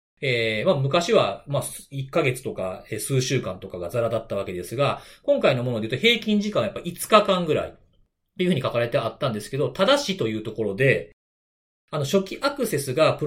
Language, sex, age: Japanese, male, 40-59